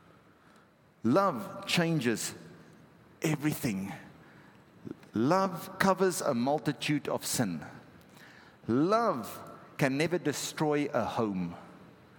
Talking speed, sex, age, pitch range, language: 75 wpm, male, 50-69, 115-170 Hz, English